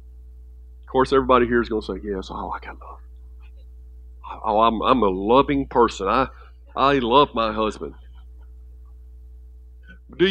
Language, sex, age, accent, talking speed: English, male, 50-69, American, 140 wpm